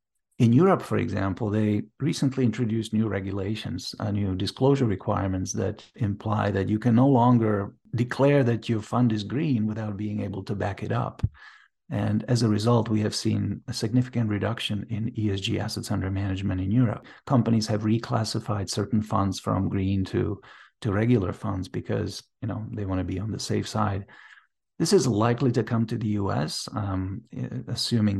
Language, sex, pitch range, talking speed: English, male, 100-120 Hz, 170 wpm